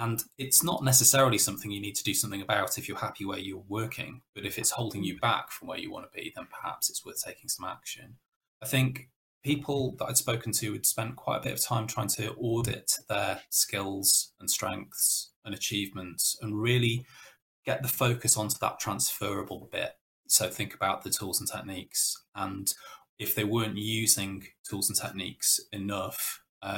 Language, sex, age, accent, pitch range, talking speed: English, male, 20-39, British, 100-120 Hz, 185 wpm